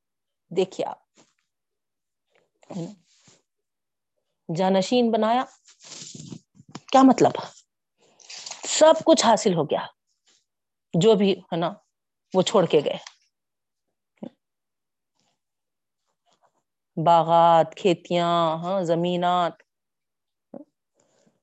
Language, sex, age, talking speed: Urdu, female, 30-49, 65 wpm